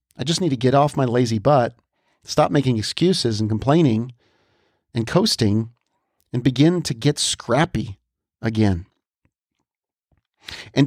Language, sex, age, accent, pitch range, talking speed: English, male, 40-59, American, 110-145 Hz, 125 wpm